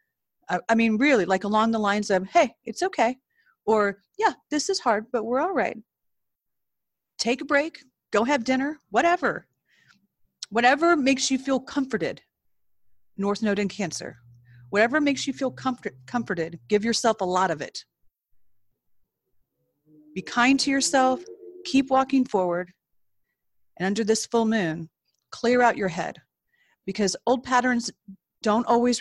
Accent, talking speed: American, 145 wpm